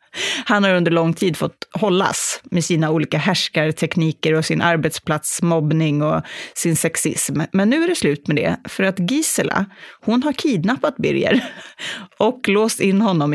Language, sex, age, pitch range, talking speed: English, female, 30-49, 165-220 Hz, 155 wpm